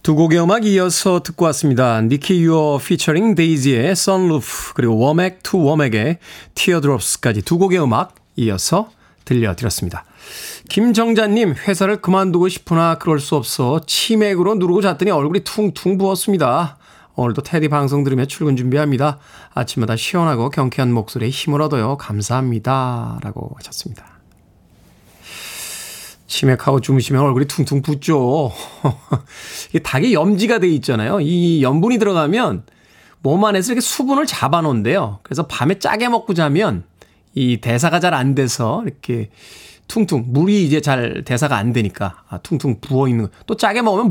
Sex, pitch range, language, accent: male, 130-180 Hz, Korean, native